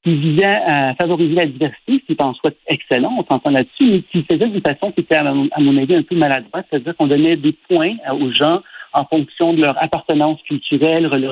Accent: French